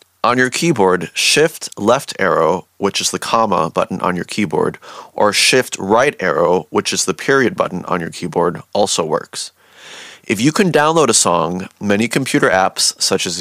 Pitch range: 95-125 Hz